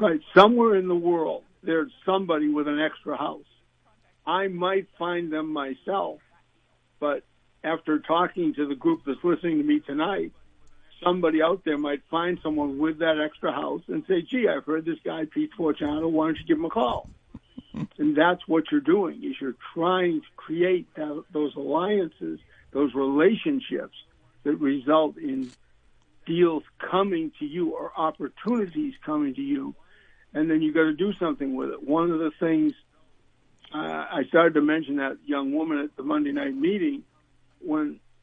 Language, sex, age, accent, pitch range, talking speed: English, male, 60-79, American, 150-190 Hz, 165 wpm